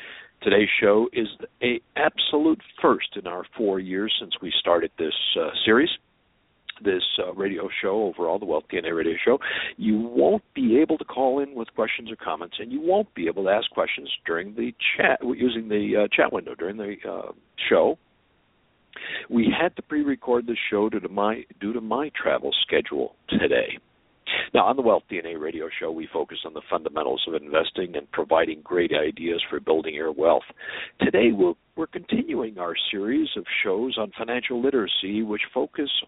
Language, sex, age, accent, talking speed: English, male, 60-79, American, 175 wpm